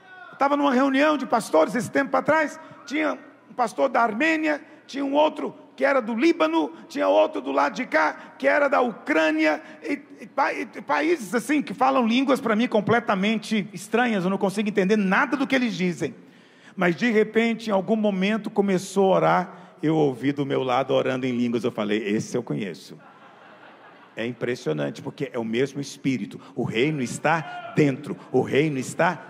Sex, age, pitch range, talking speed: male, 50-69, 195-280 Hz, 180 wpm